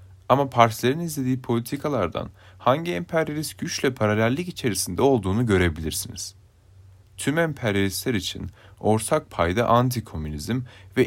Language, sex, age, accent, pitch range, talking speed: Turkish, male, 30-49, native, 95-130 Hz, 100 wpm